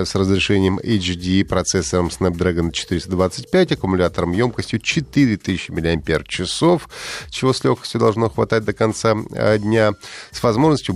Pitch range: 90-125 Hz